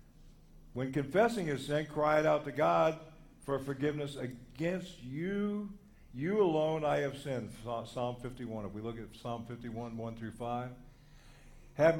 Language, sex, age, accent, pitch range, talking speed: English, male, 60-79, American, 110-140 Hz, 150 wpm